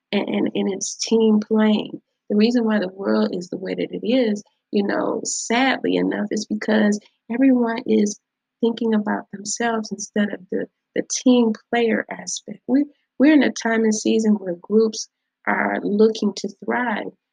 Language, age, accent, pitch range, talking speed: English, 30-49, American, 195-225 Hz, 165 wpm